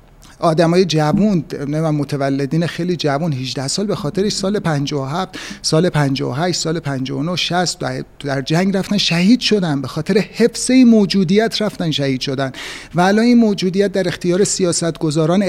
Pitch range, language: 155-195 Hz, Persian